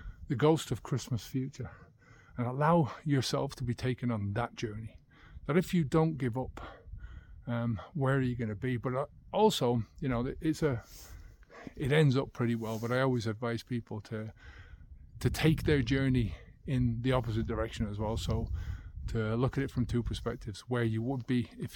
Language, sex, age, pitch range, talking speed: English, male, 30-49, 105-135 Hz, 180 wpm